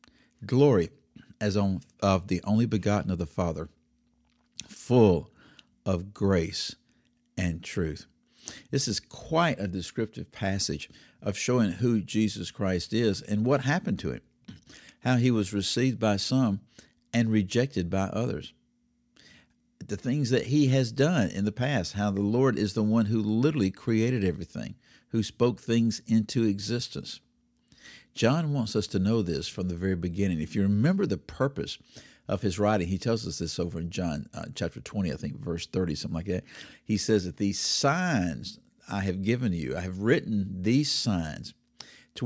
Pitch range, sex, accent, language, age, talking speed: 90-115 Hz, male, American, English, 60-79, 165 wpm